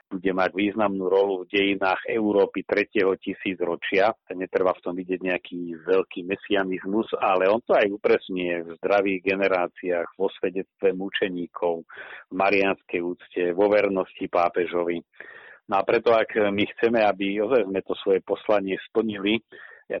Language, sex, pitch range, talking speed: Slovak, male, 90-105 Hz, 140 wpm